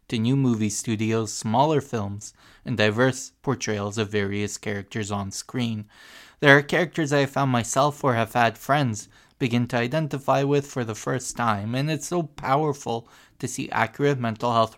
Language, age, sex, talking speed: English, 20-39, male, 170 wpm